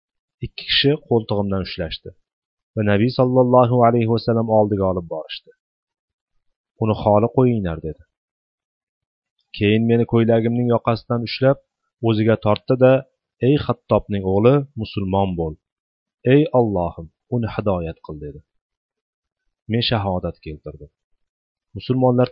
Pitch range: 100-120 Hz